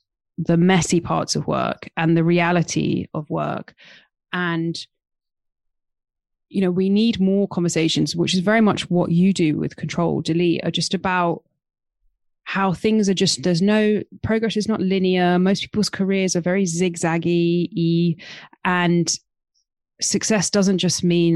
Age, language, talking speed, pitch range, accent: 20-39, English, 145 wpm, 165-200 Hz, British